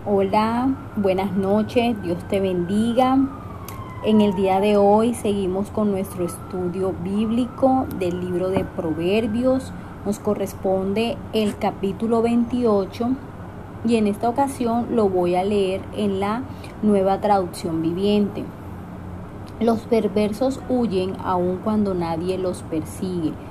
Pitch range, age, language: 170-215 Hz, 30-49, Spanish